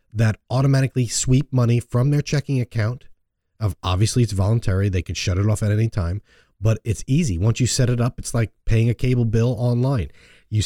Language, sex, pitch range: English, male, 100-130 Hz